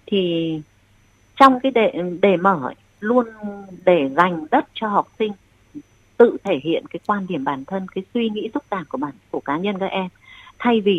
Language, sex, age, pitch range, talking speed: Vietnamese, female, 30-49, 160-235 Hz, 190 wpm